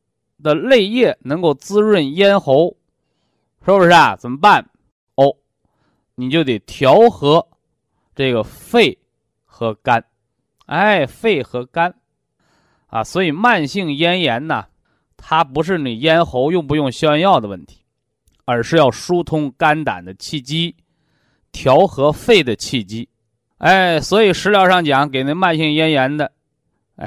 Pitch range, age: 125-180 Hz, 20-39